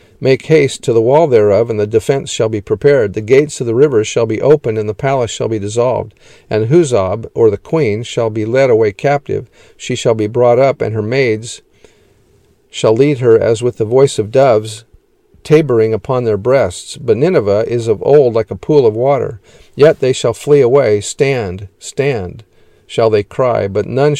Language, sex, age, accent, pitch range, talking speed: English, male, 50-69, American, 110-150 Hz, 195 wpm